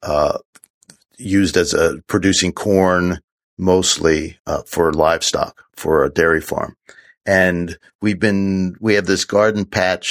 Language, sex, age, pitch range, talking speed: English, male, 50-69, 85-100 Hz, 130 wpm